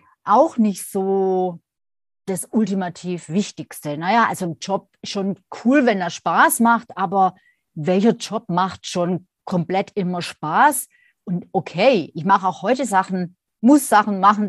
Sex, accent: female, German